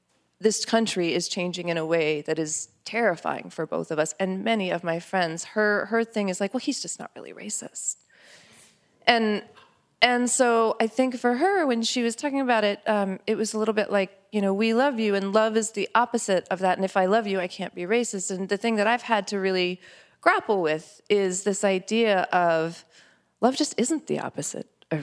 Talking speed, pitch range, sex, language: 220 wpm, 180-215 Hz, female, English